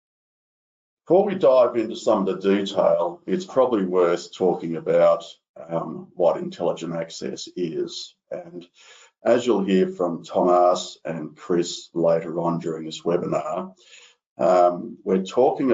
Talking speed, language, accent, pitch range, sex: 130 wpm, English, Australian, 85-100 Hz, male